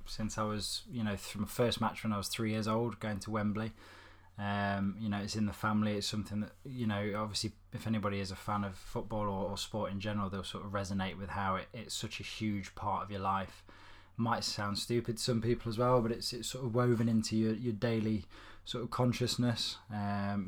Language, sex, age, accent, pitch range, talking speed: English, male, 20-39, British, 95-110 Hz, 235 wpm